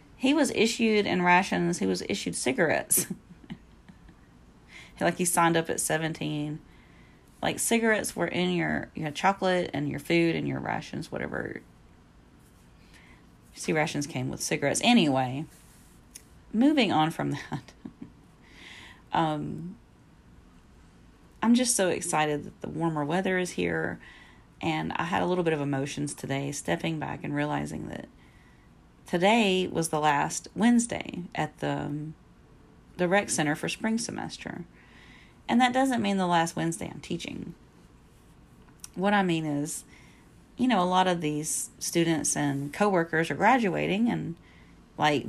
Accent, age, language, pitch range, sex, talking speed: American, 40-59, English, 140-185 Hz, female, 140 wpm